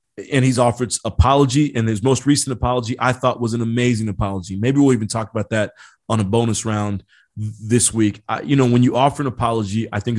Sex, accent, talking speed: male, American, 220 wpm